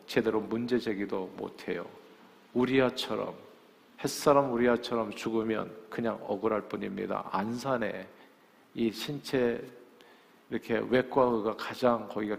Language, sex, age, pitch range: Korean, male, 50-69, 110-135 Hz